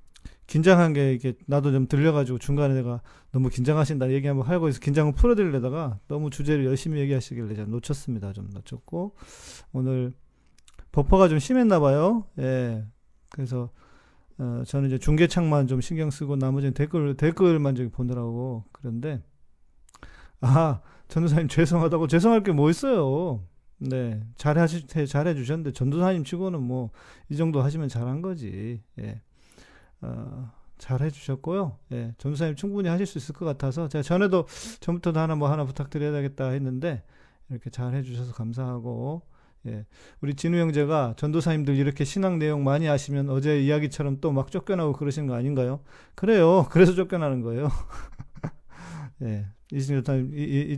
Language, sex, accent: Korean, male, native